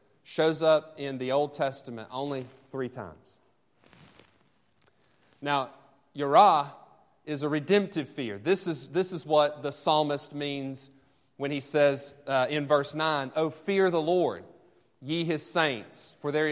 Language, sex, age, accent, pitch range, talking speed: English, male, 30-49, American, 130-155 Hz, 145 wpm